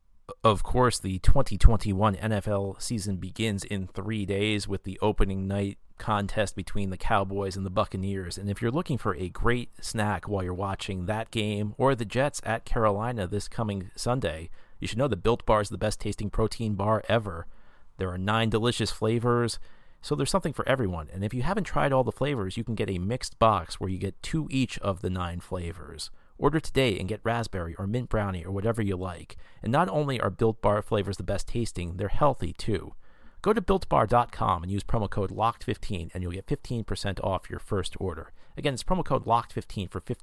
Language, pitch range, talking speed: English, 95-115 Hz, 200 wpm